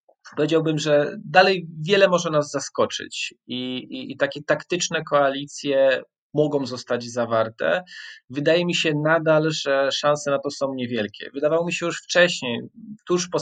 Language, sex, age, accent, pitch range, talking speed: English, male, 20-39, Polish, 120-160 Hz, 145 wpm